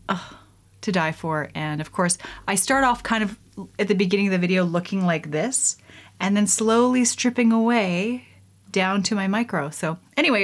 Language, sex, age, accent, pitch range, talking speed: English, female, 30-49, American, 175-225 Hz, 180 wpm